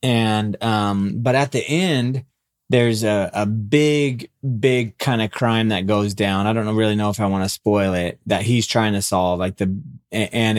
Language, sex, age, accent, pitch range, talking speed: English, male, 30-49, American, 100-120 Hz, 200 wpm